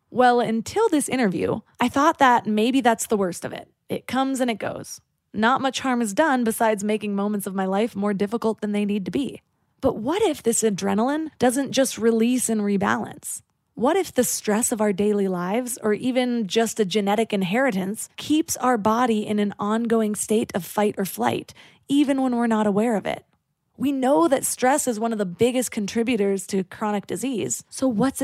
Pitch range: 205-250 Hz